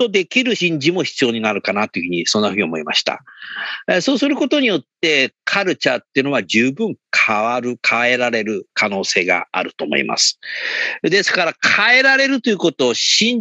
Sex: male